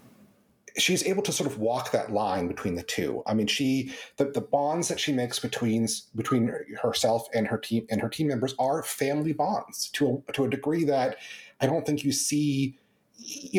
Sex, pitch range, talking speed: male, 120-170 Hz, 200 wpm